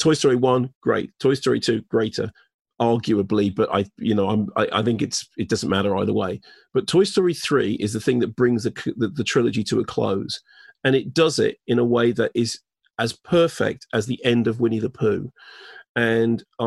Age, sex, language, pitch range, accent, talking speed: 40-59, male, English, 115-130 Hz, British, 210 wpm